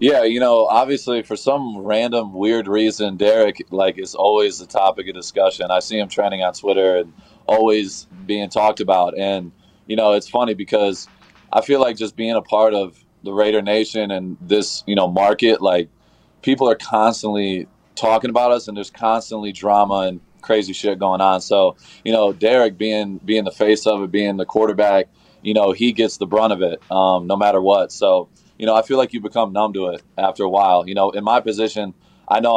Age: 20-39